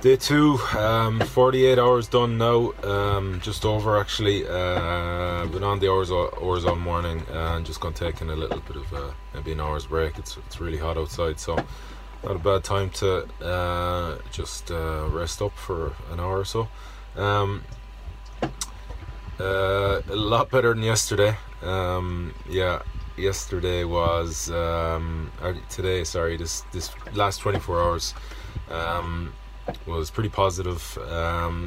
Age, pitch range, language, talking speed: 20-39, 80-100 Hz, English, 150 wpm